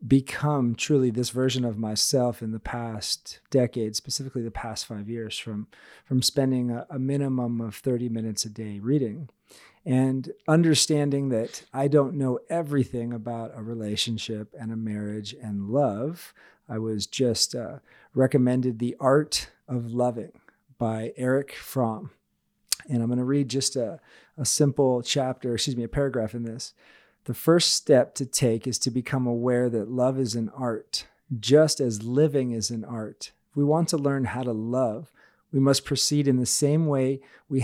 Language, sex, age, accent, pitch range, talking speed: English, male, 40-59, American, 115-140 Hz, 170 wpm